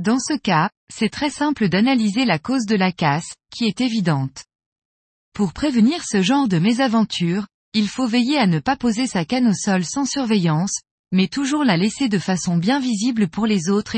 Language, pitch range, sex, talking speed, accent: French, 180-250 Hz, female, 195 wpm, French